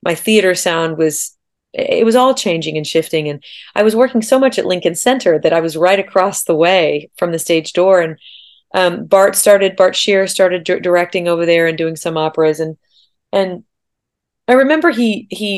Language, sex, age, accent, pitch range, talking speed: English, female, 30-49, American, 160-200 Hz, 195 wpm